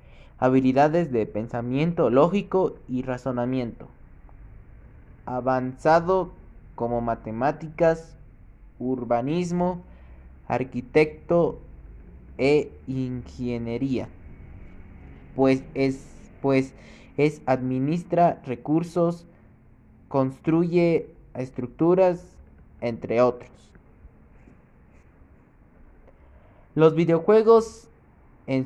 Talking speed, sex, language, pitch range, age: 50 wpm, male, Spanish, 115-160 Hz, 20-39